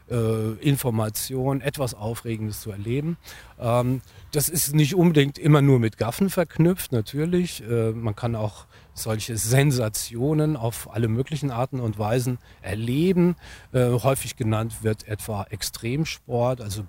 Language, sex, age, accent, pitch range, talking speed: German, male, 40-59, German, 105-140 Hz, 115 wpm